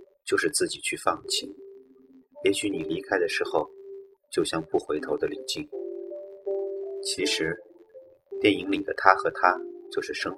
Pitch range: 370-445 Hz